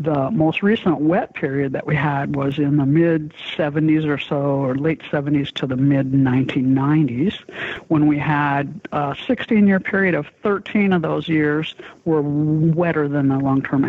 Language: English